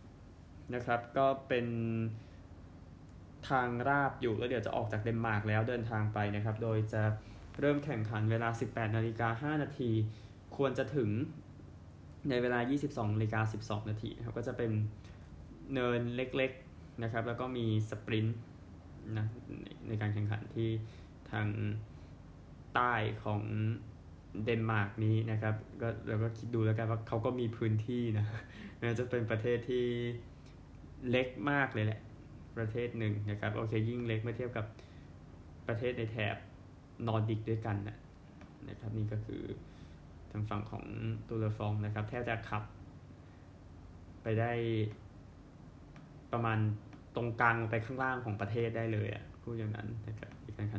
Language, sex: Thai, male